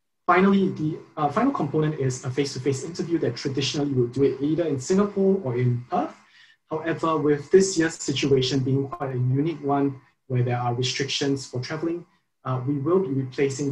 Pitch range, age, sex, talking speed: 130-165 Hz, 20-39, male, 180 wpm